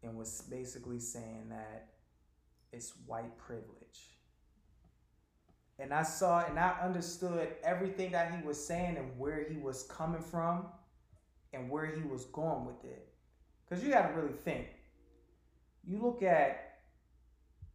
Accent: American